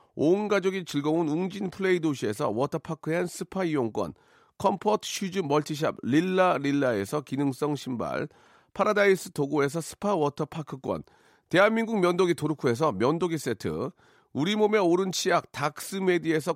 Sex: male